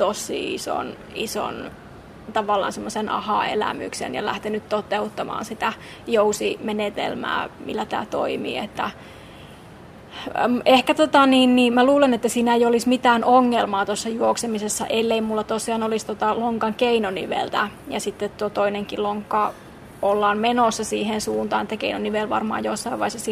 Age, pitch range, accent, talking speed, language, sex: 20-39, 205-230 Hz, native, 125 wpm, Finnish, female